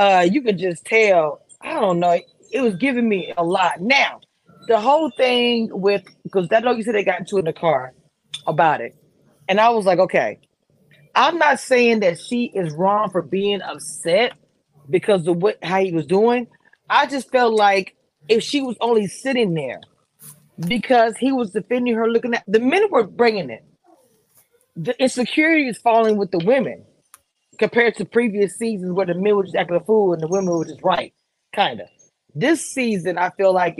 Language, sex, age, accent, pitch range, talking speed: English, female, 30-49, American, 185-245 Hz, 190 wpm